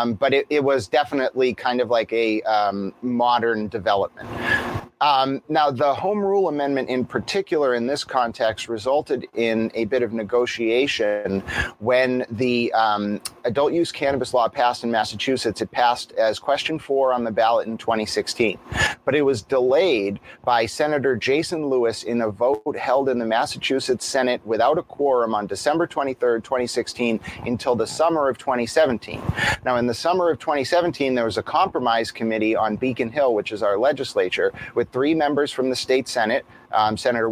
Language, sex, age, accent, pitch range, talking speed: English, male, 30-49, American, 110-135 Hz, 170 wpm